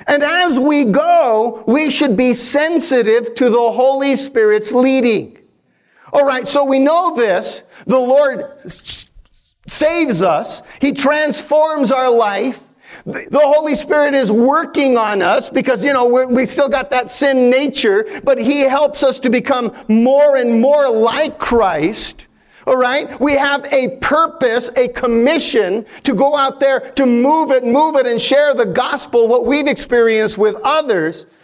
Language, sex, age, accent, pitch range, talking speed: English, male, 50-69, American, 245-280 Hz, 150 wpm